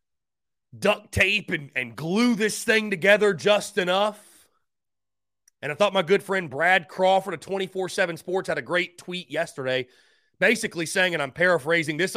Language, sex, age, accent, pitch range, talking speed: English, male, 30-49, American, 140-210 Hz, 160 wpm